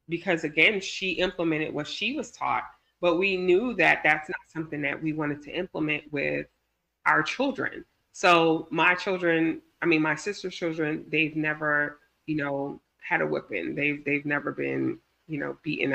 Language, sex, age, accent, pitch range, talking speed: English, female, 30-49, American, 150-175 Hz, 170 wpm